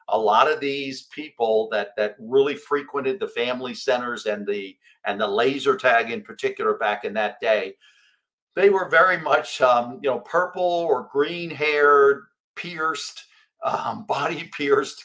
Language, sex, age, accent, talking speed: English, male, 50-69, American, 155 wpm